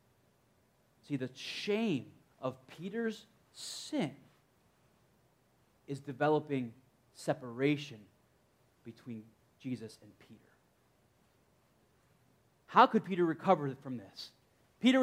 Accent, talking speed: American, 80 wpm